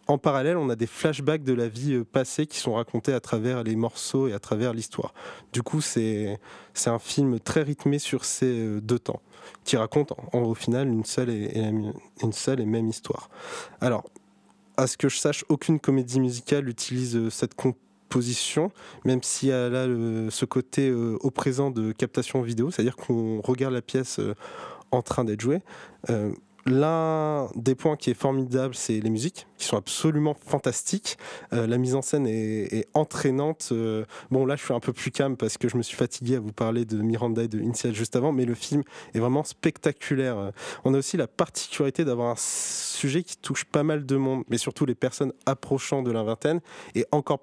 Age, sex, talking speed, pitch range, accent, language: 20-39, male, 210 wpm, 115-140 Hz, French, French